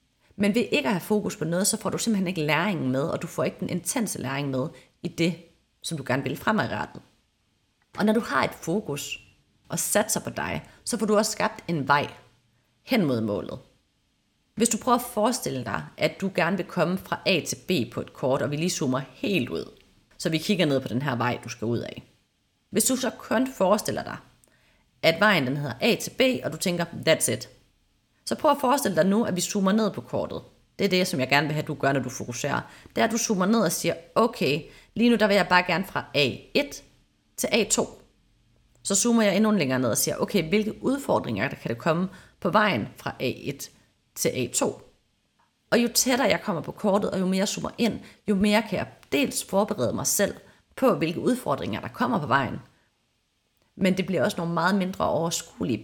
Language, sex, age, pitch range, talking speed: Danish, female, 30-49, 135-210 Hz, 220 wpm